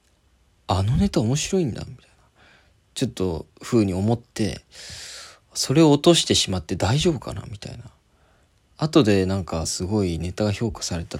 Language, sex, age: Japanese, male, 20-39